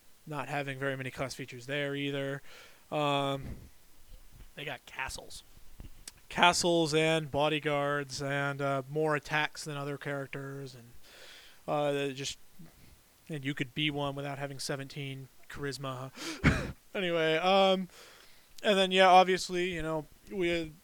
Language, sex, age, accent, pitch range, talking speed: English, male, 20-39, American, 140-160 Hz, 125 wpm